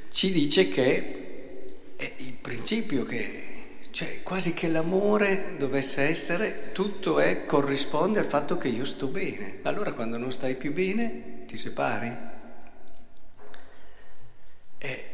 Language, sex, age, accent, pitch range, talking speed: Italian, male, 50-69, native, 110-145 Hz, 125 wpm